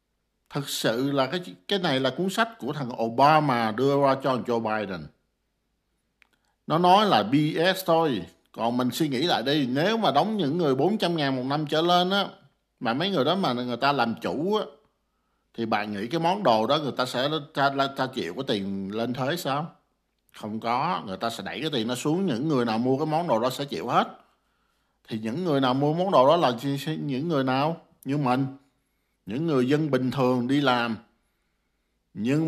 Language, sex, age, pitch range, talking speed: Vietnamese, male, 50-69, 120-165 Hz, 205 wpm